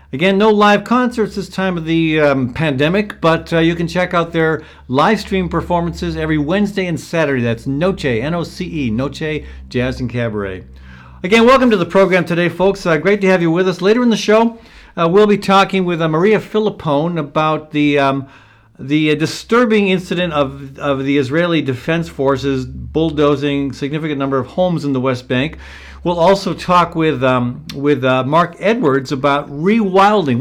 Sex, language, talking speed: male, English, 180 wpm